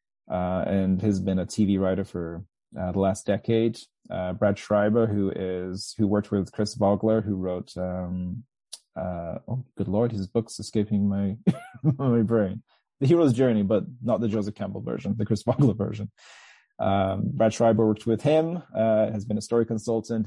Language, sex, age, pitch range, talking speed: English, male, 20-39, 100-110 Hz, 180 wpm